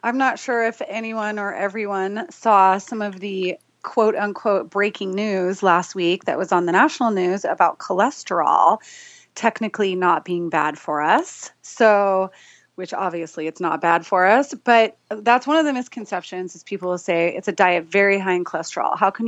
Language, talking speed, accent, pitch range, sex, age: English, 180 wpm, American, 180-220 Hz, female, 30-49